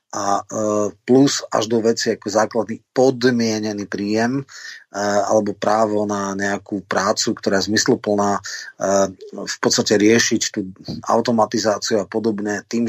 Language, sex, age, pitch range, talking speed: Slovak, male, 30-49, 105-120 Hz, 115 wpm